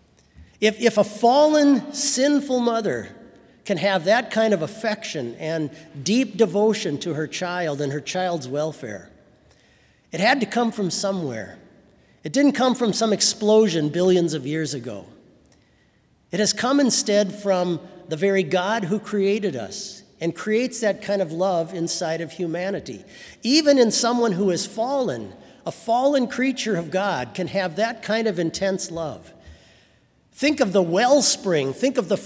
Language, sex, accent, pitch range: English, male, American, 155-220 Hz